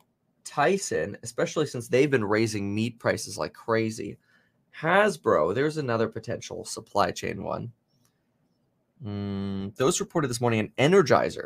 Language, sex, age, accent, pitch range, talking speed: English, male, 20-39, American, 105-130 Hz, 125 wpm